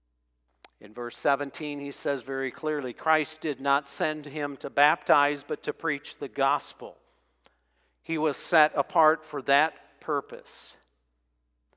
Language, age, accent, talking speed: English, 50-69, American, 135 wpm